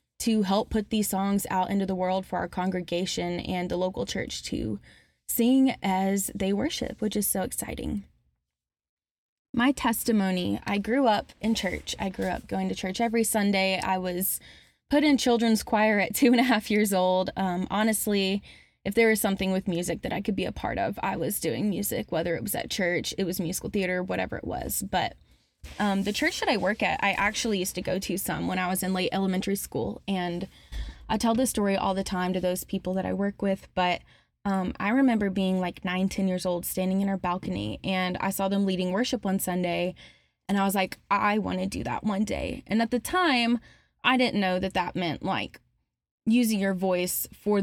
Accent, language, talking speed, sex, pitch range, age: American, English, 215 wpm, female, 185-215 Hz, 20-39